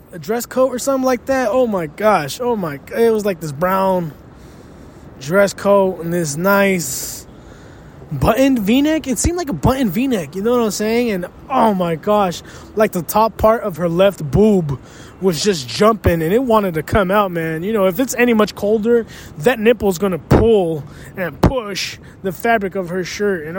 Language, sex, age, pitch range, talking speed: English, male, 20-39, 185-240 Hz, 195 wpm